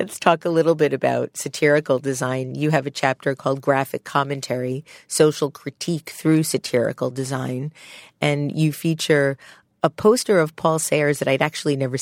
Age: 40-59